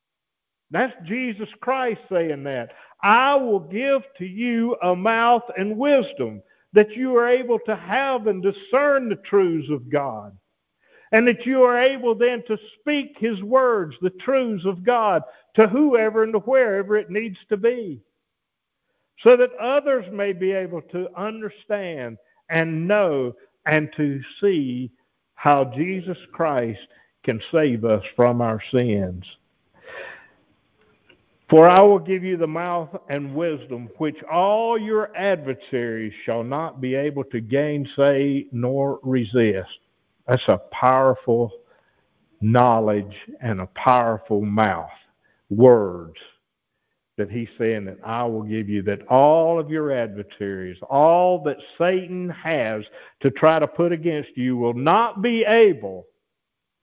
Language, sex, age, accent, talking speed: English, male, 50-69, American, 135 wpm